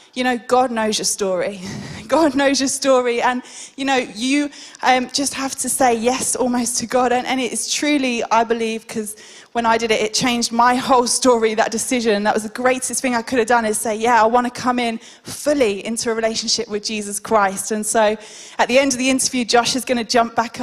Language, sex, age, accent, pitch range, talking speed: English, female, 10-29, British, 210-255 Hz, 235 wpm